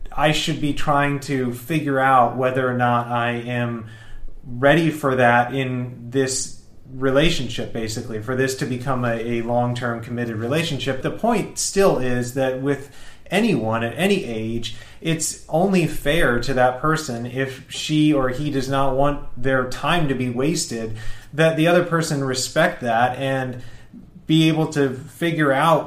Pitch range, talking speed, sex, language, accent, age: 120-150 Hz, 160 wpm, male, English, American, 30-49